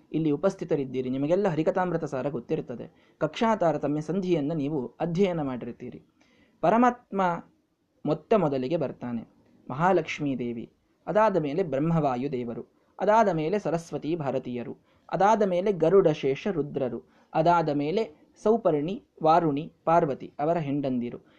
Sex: male